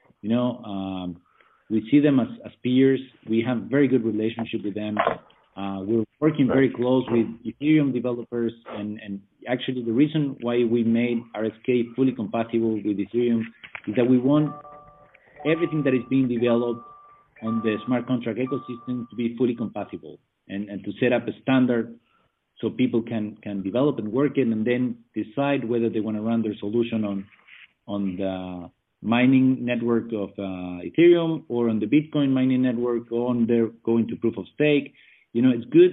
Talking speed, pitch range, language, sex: 175 wpm, 110-130 Hz, English, male